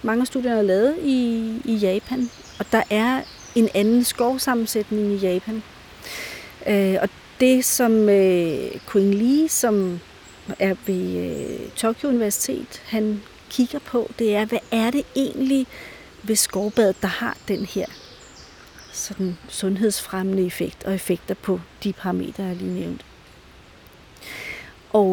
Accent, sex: native, female